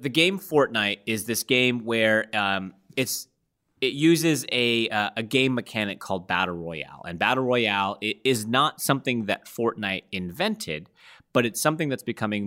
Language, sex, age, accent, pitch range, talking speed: English, male, 30-49, American, 95-120 Hz, 165 wpm